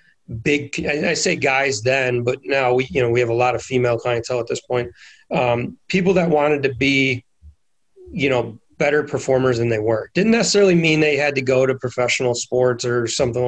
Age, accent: 30-49, American